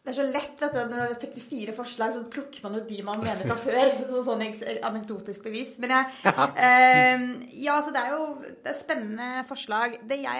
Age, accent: 30-49, Norwegian